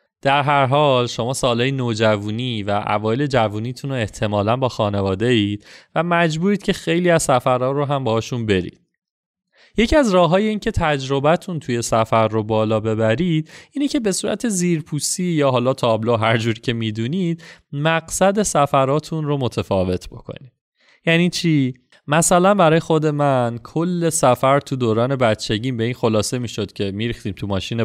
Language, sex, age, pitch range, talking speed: Persian, male, 30-49, 115-160 Hz, 150 wpm